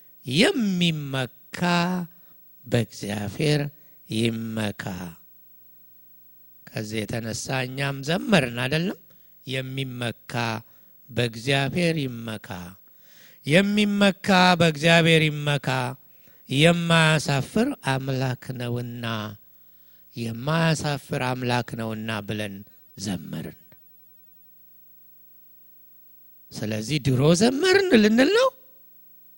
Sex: male